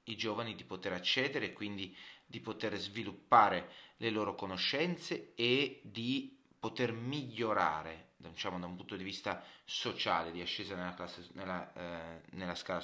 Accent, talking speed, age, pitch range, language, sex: native, 145 wpm, 30-49, 90-130 Hz, Italian, male